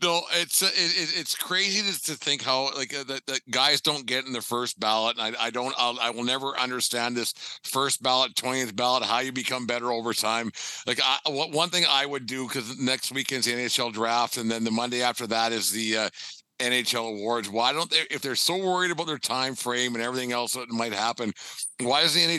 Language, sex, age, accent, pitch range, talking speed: English, male, 50-69, American, 120-145 Hz, 225 wpm